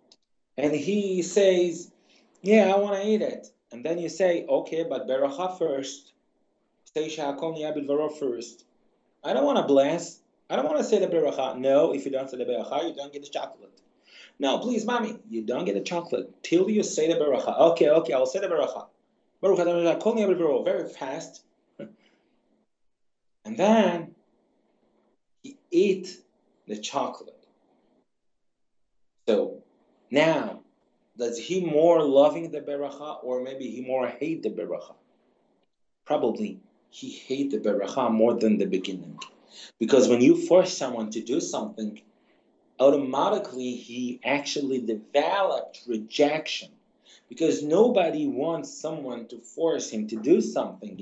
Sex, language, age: male, English, 30-49